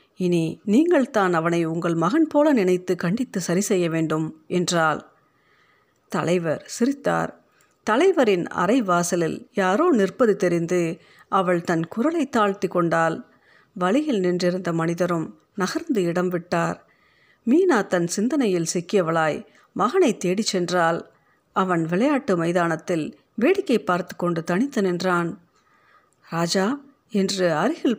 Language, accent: Tamil, native